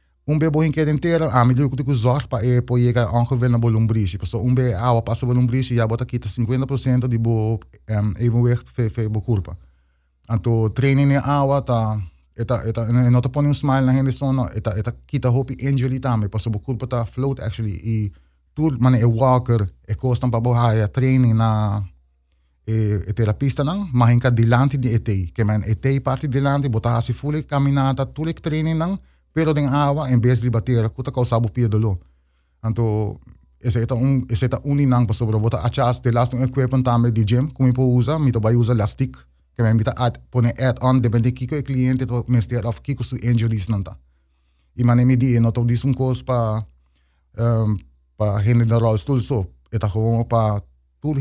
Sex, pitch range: male, 110-130 Hz